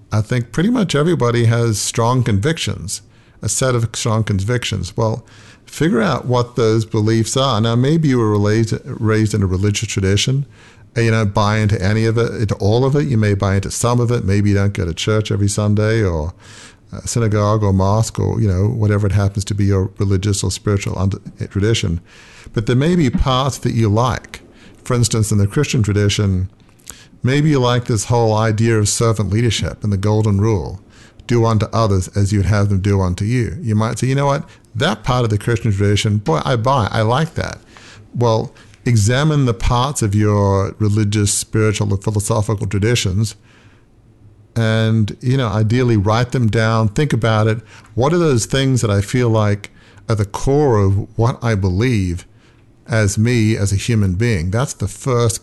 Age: 50-69